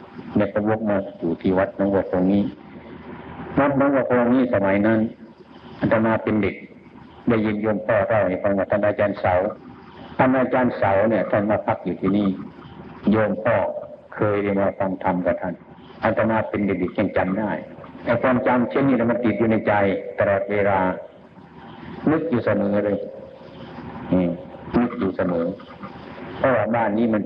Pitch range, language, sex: 100-115 Hz, Thai, male